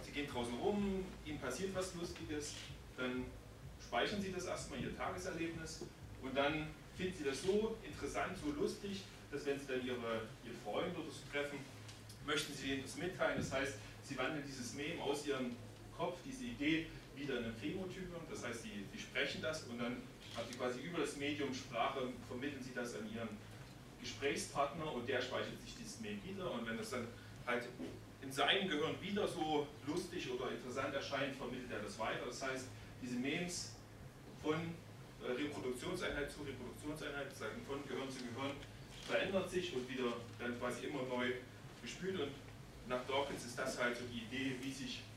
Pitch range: 120-145 Hz